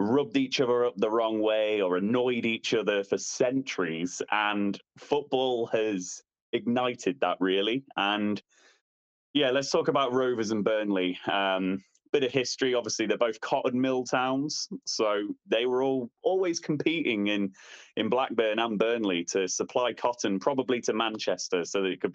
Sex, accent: male, British